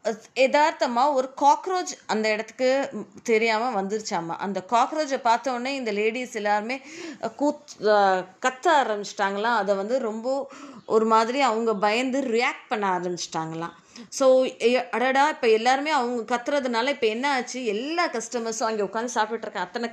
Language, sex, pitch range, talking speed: Tamil, female, 215-275 Hz, 125 wpm